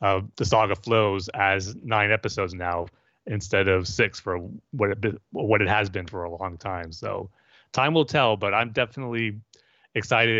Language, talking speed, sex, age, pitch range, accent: English, 180 wpm, male, 30-49, 100-115 Hz, American